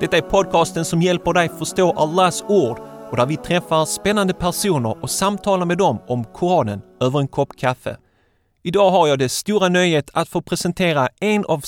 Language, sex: Swedish, male